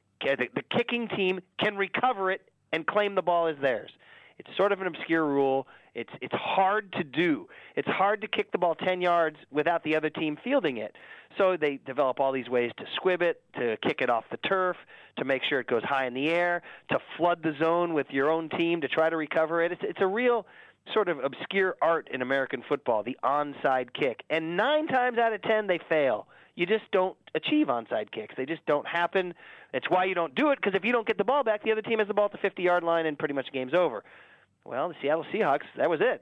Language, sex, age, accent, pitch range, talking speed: English, male, 30-49, American, 145-195 Hz, 235 wpm